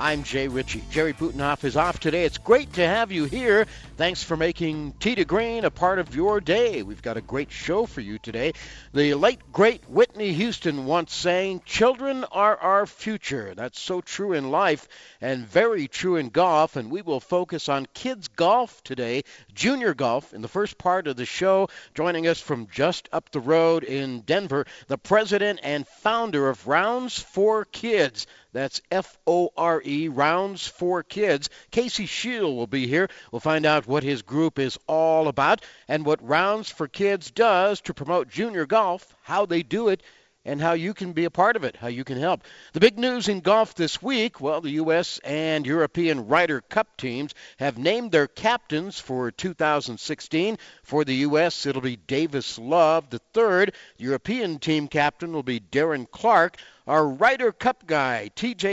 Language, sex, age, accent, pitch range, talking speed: English, male, 50-69, American, 140-195 Hz, 180 wpm